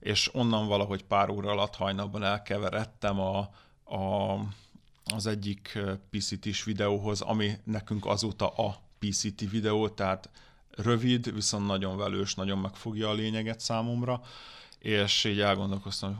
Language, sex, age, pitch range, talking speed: Hungarian, male, 30-49, 100-110 Hz, 120 wpm